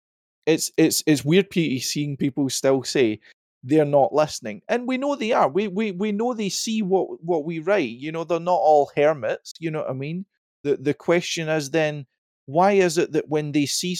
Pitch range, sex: 115-155 Hz, male